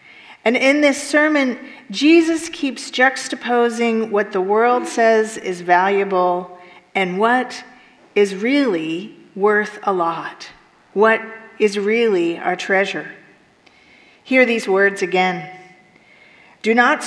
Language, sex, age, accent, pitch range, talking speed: English, female, 40-59, American, 185-235 Hz, 110 wpm